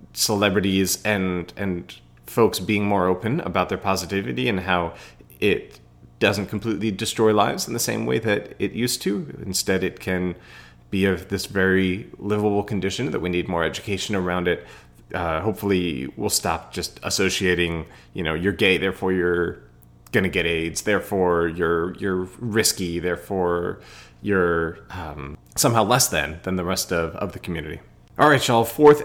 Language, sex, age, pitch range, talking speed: English, male, 30-49, 90-110 Hz, 160 wpm